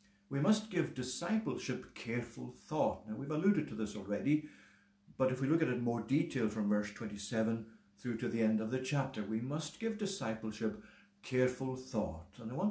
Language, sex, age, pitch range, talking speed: English, male, 60-79, 110-150 Hz, 190 wpm